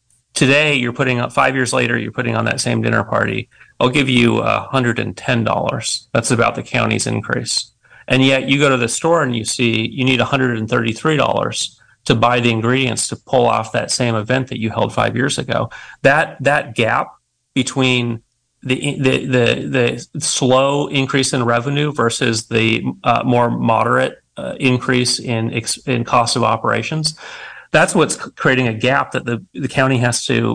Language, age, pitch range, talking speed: English, 30-49, 115-130 Hz, 170 wpm